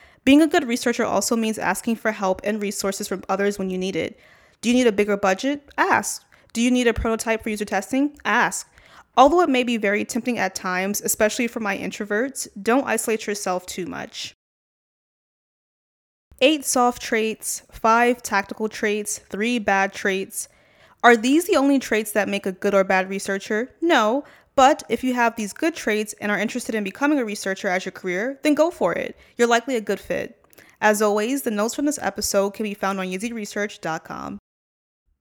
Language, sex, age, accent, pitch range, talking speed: English, female, 20-39, American, 195-245 Hz, 185 wpm